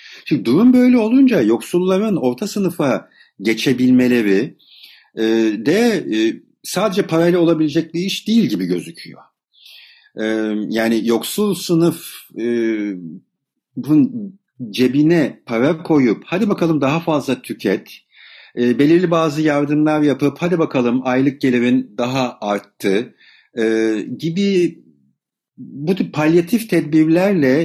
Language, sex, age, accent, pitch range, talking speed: Turkish, male, 50-69, native, 115-180 Hz, 95 wpm